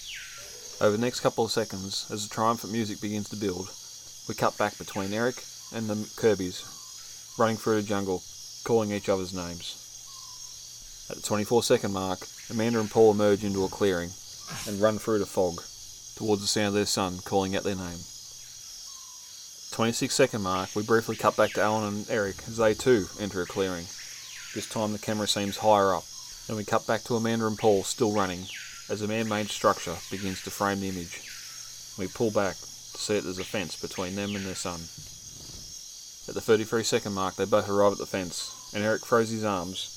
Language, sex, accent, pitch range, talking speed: English, male, Australian, 95-110 Hz, 195 wpm